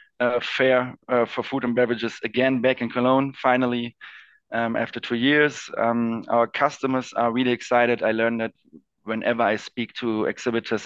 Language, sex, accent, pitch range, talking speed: English, male, German, 110-125 Hz, 165 wpm